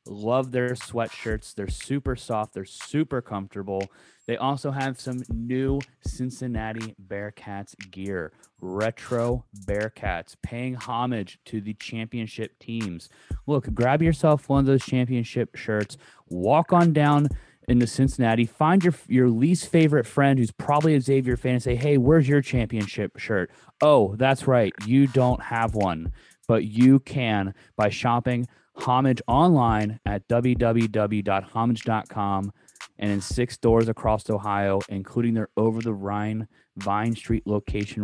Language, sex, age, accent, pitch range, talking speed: English, male, 20-39, American, 105-125 Hz, 135 wpm